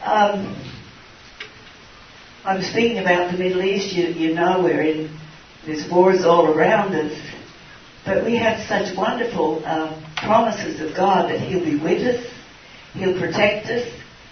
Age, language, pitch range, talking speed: 60-79, English, 155-195 Hz, 145 wpm